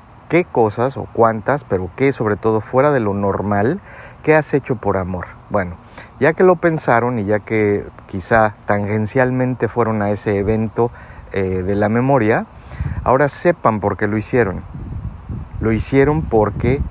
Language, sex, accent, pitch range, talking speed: Spanish, male, Mexican, 100-120 Hz, 155 wpm